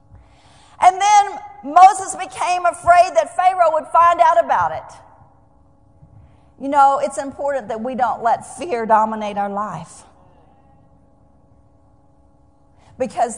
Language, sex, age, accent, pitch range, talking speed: English, female, 40-59, American, 270-385 Hz, 110 wpm